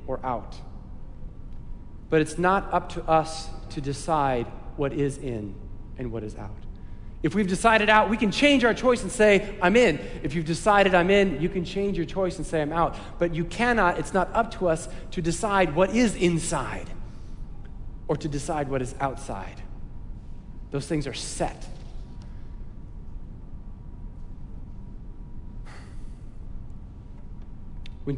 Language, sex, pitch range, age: English, male, 125-180 Hz, 40-59